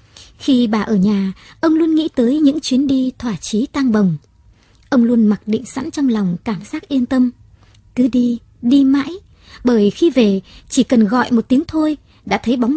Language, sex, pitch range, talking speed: Vietnamese, male, 200-270 Hz, 195 wpm